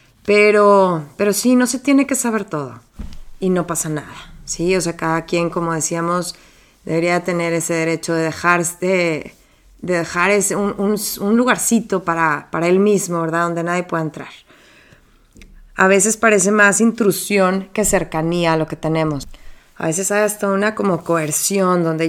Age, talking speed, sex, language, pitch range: 20-39, 170 wpm, female, English, 175-220 Hz